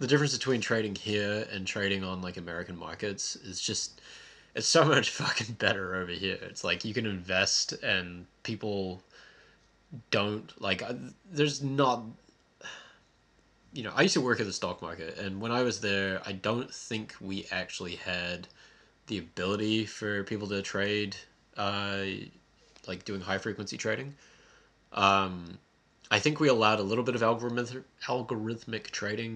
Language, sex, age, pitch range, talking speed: English, male, 20-39, 90-110 Hz, 155 wpm